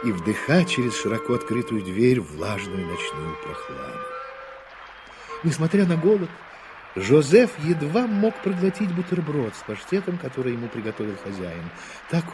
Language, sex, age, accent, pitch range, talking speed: Russian, male, 50-69, native, 110-185 Hz, 115 wpm